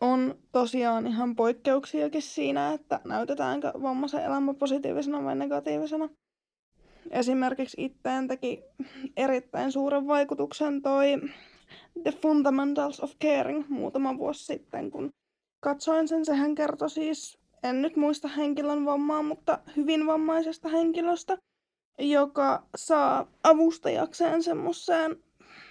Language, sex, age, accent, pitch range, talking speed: Finnish, female, 20-39, native, 290-340 Hz, 105 wpm